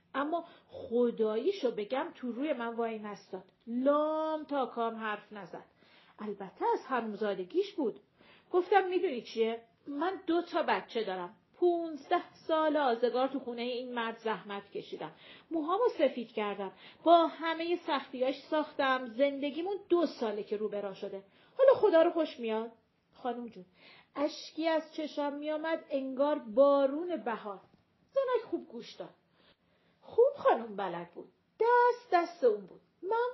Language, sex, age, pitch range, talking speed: Persian, female, 40-59, 225-330 Hz, 135 wpm